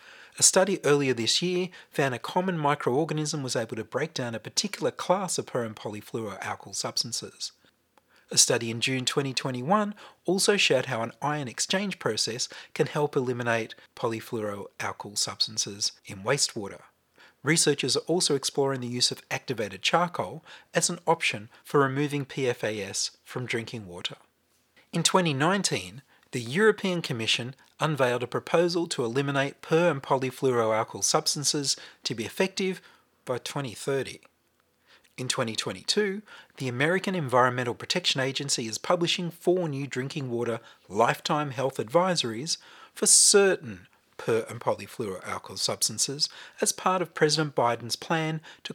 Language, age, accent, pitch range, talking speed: English, 30-49, Australian, 120-170 Hz, 130 wpm